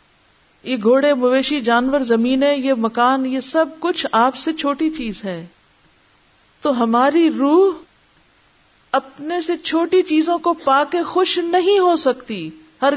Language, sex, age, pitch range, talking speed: Urdu, female, 50-69, 210-275 Hz, 140 wpm